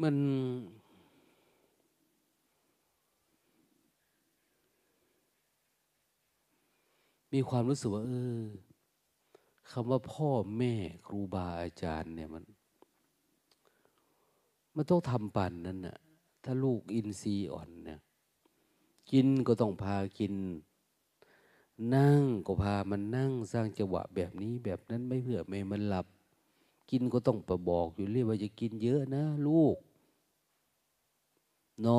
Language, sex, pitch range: Thai, male, 100-130 Hz